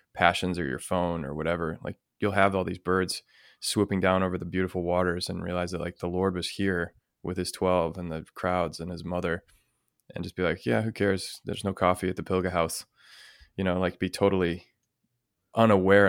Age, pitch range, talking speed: 20-39, 90-100 Hz, 205 wpm